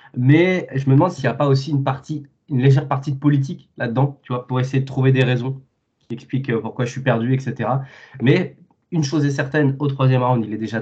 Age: 20-39